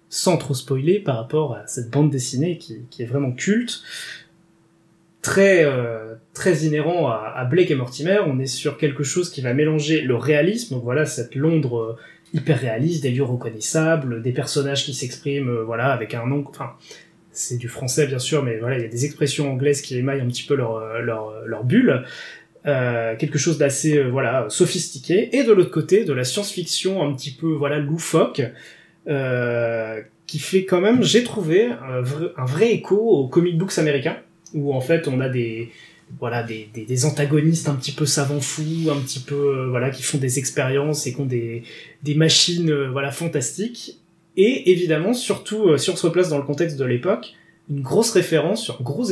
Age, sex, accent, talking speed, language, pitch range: 20-39, male, French, 190 wpm, French, 125-165 Hz